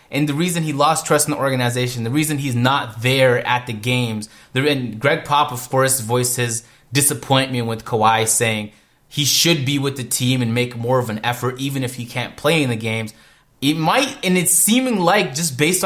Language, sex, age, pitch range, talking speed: English, male, 20-39, 125-155 Hz, 210 wpm